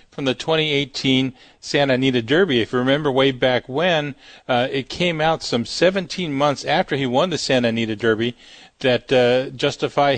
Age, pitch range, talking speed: 40-59, 120-145 Hz, 170 wpm